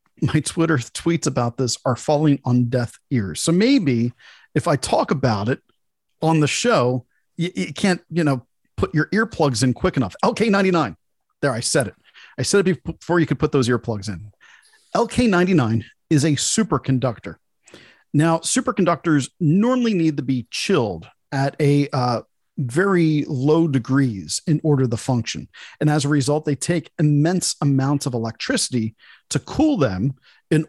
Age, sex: 40-59, male